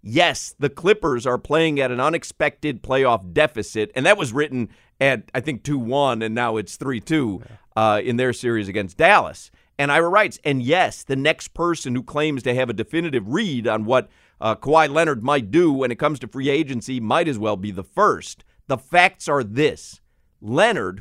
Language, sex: English, male